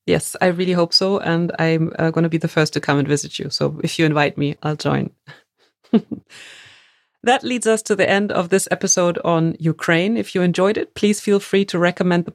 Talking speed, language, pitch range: 220 wpm, German, 160-200 Hz